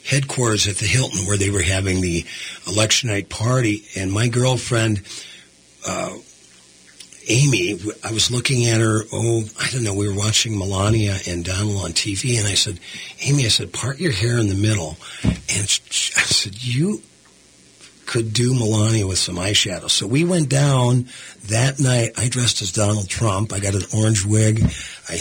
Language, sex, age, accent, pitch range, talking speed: English, male, 50-69, American, 95-120 Hz, 175 wpm